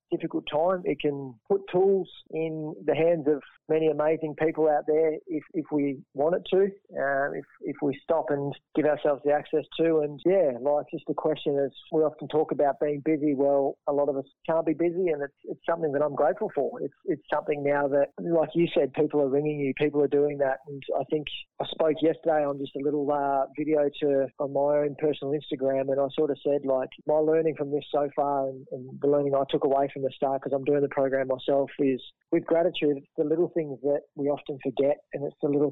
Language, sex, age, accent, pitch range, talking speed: English, male, 20-39, Australian, 140-155 Hz, 230 wpm